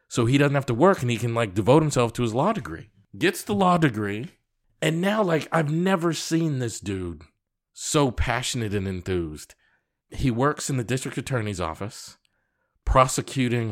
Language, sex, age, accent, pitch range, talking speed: English, male, 40-59, American, 115-170 Hz, 175 wpm